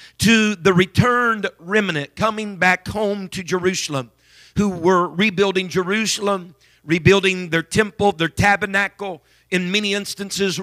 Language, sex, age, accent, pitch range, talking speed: English, male, 50-69, American, 170-205 Hz, 120 wpm